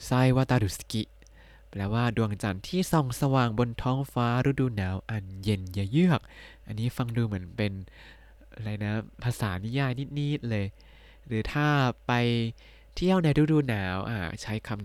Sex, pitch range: male, 105-135 Hz